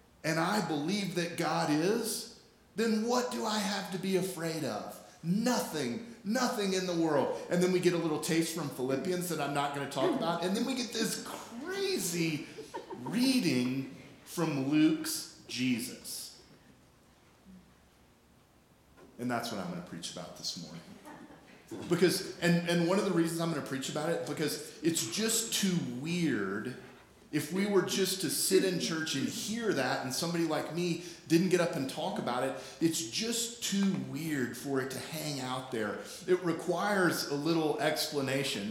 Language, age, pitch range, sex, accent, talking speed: English, 40-59, 135-190 Hz, male, American, 165 wpm